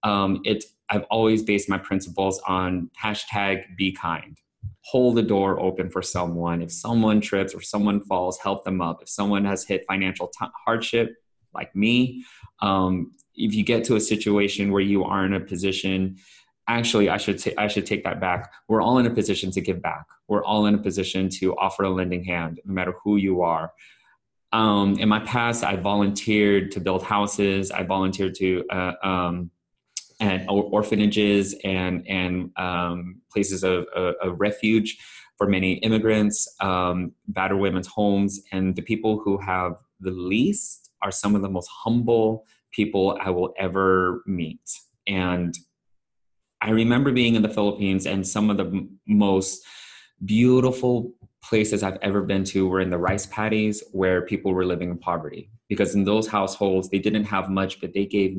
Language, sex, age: English, male, 20-39